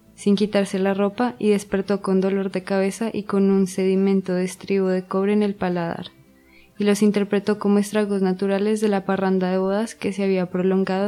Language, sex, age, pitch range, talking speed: English, female, 20-39, 185-210 Hz, 195 wpm